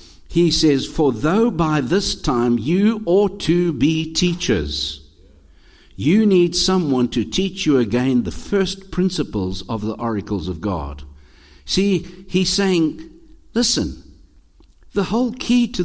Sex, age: male, 60-79